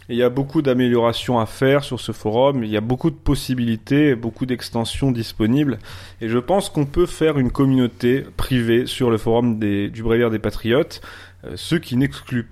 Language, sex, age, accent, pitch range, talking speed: French, male, 30-49, French, 110-135 Hz, 195 wpm